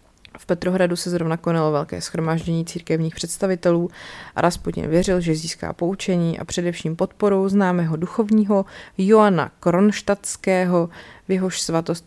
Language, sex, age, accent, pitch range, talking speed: Czech, female, 30-49, native, 165-190 Hz, 125 wpm